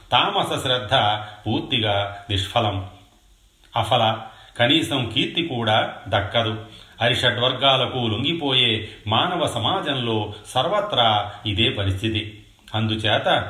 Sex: male